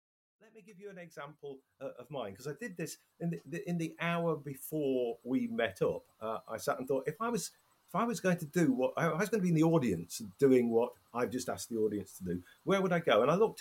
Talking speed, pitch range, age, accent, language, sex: 275 wpm, 125-185 Hz, 50-69, British, English, male